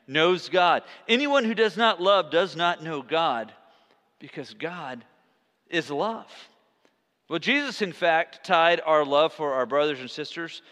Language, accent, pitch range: English, American, 165-235 Hz